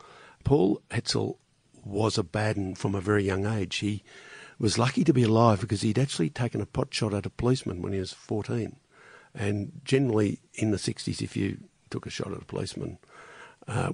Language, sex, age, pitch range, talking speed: English, male, 60-79, 95-115 Hz, 190 wpm